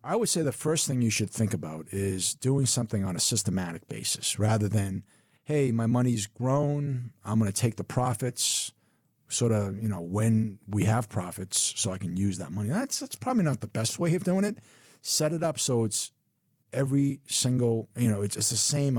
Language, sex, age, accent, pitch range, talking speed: English, male, 50-69, American, 105-135 Hz, 210 wpm